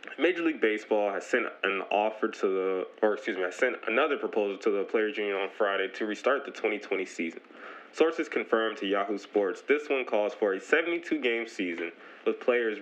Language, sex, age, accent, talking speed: English, male, 20-39, American, 190 wpm